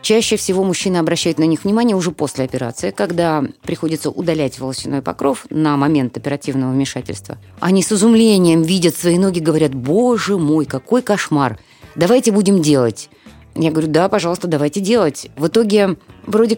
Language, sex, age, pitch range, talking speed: Russian, female, 20-39, 145-185 Hz, 150 wpm